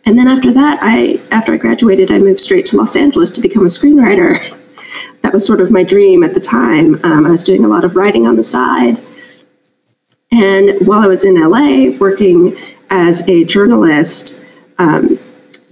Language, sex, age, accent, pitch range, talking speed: English, female, 30-49, American, 200-335 Hz, 185 wpm